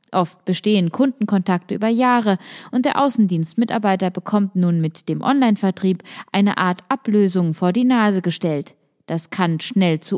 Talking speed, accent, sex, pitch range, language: 140 wpm, German, female, 180-235 Hz, German